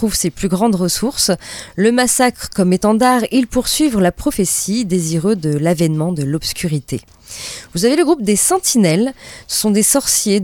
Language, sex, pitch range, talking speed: French, female, 170-240 Hz, 155 wpm